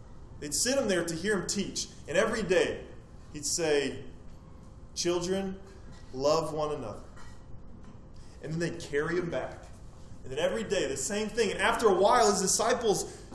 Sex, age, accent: male, 20-39, American